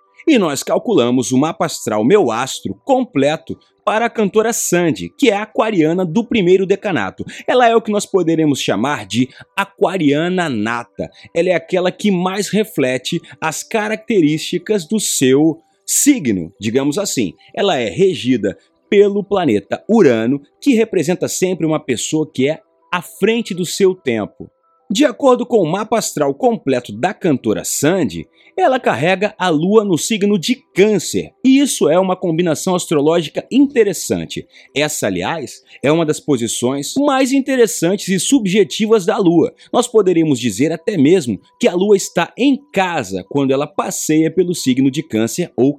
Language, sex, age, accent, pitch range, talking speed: Portuguese, male, 30-49, Brazilian, 150-220 Hz, 155 wpm